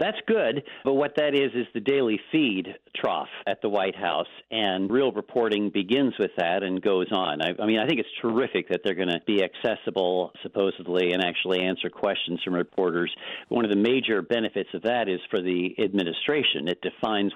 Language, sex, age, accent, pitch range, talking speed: English, male, 50-69, American, 90-115 Hz, 195 wpm